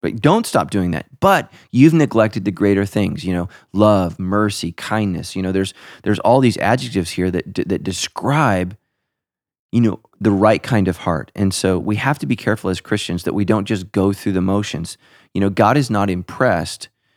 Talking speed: 205 wpm